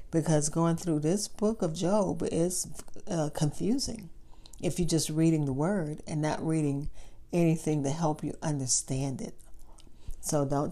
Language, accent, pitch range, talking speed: English, American, 145-170 Hz, 150 wpm